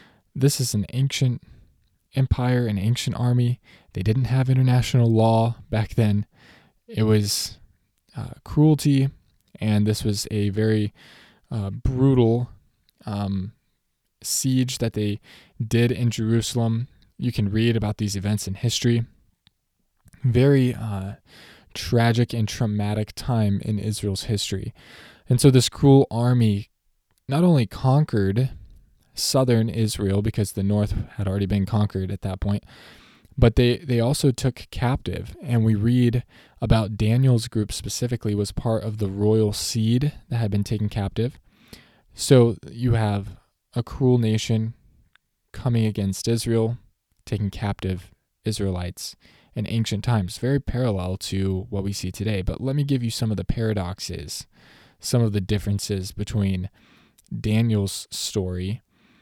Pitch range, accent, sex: 100-120 Hz, American, male